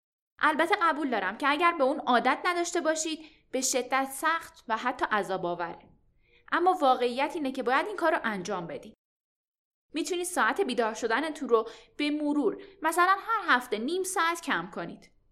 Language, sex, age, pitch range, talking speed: Persian, female, 10-29, 230-320 Hz, 155 wpm